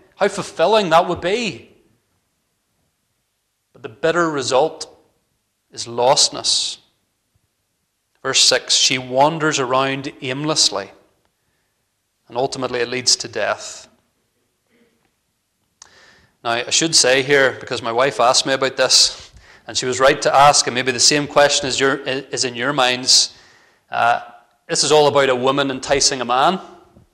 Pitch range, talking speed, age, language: 130-155 Hz, 135 wpm, 30-49, English